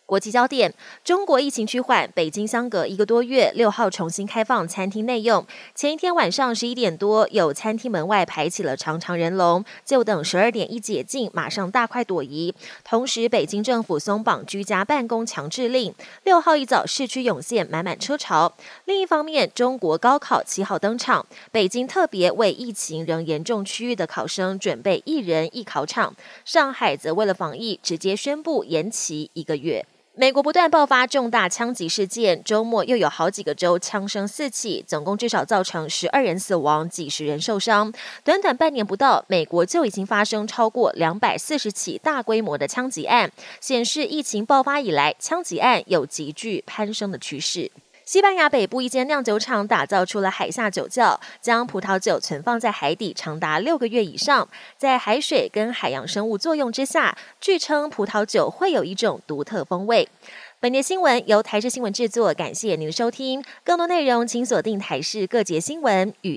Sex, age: female, 20-39